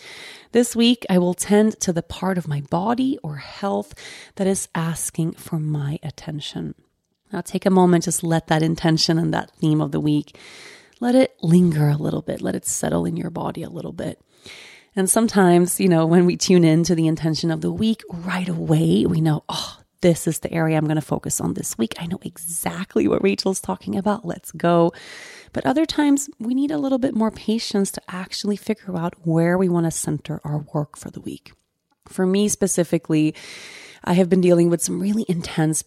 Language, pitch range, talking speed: English, 165-205 Hz, 210 wpm